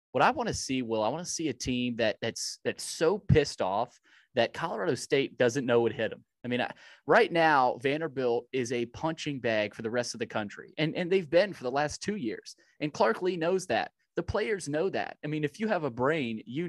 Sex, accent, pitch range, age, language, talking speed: male, American, 120-155 Hz, 30-49, English, 245 wpm